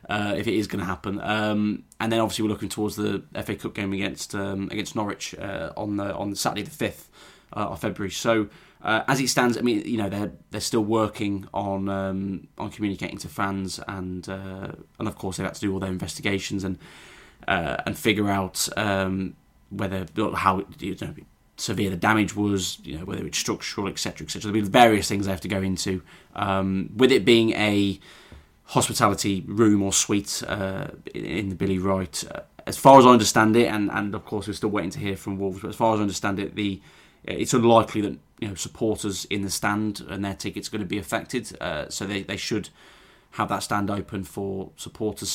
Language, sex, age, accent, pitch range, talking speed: English, male, 20-39, British, 95-110 Hz, 215 wpm